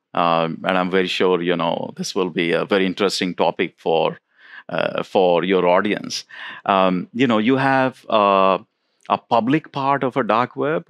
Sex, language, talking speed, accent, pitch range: male, English, 175 wpm, Indian, 95-120 Hz